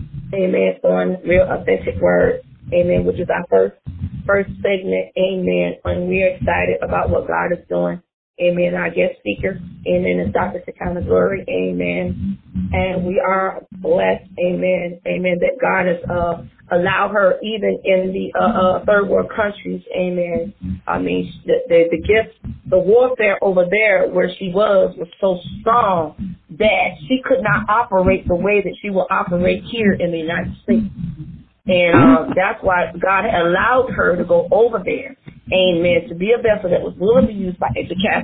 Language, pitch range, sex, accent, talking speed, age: English, 175-230 Hz, female, American, 175 wpm, 20-39